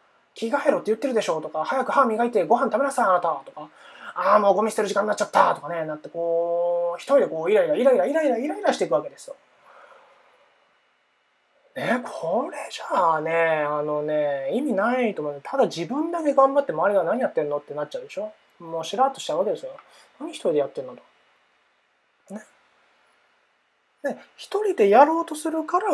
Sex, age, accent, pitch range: male, 20-39, native, 190-300 Hz